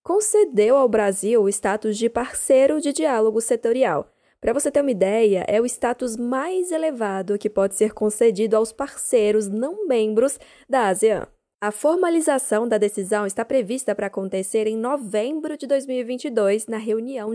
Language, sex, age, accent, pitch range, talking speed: Portuguese, female, 10-29, Brazilian, 210-270 Hz, 150 wpm